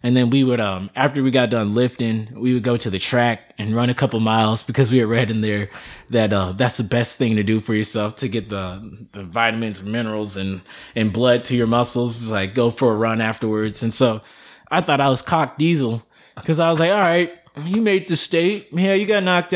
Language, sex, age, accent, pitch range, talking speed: English, male, 20-39, American, 110-140 Hz, 240 wpm